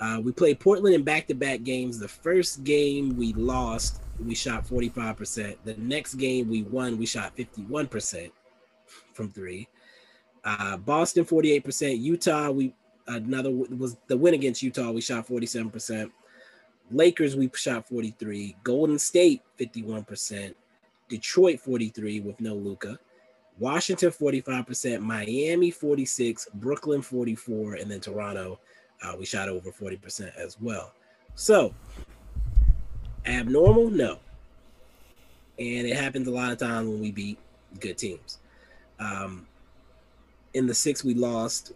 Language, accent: English, American